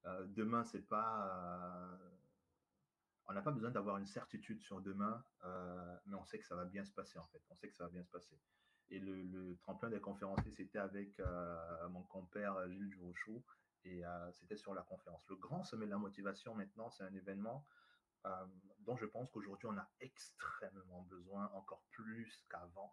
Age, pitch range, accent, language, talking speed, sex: 30-49, 95-105 Hz, French, French, 195 wpm, male